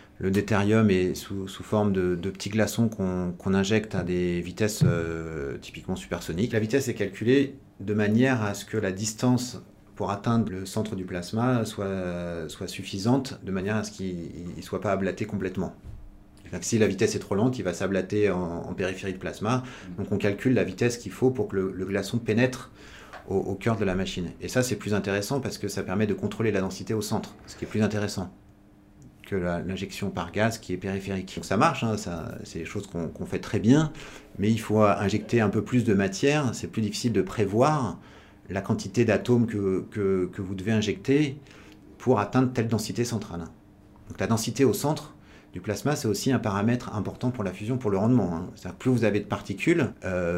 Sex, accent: male, French